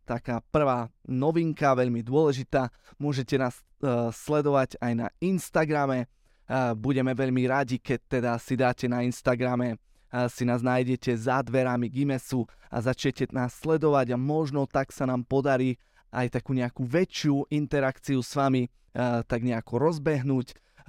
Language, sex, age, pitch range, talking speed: Slovak, male, 20-39, 125-145 Hz, 130 wpm